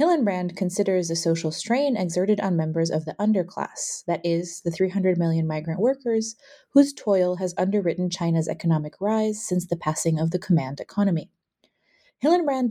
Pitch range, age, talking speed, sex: 170-215 Hz, 20-39, 155 wpm, female